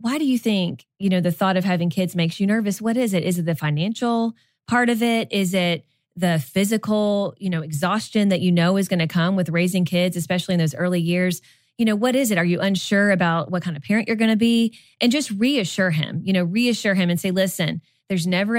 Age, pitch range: 20-39, 170-205 Hz